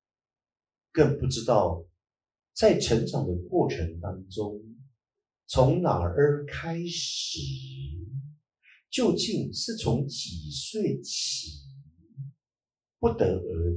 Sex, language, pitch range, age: male, Chinese, 80-125 Hz, 50-69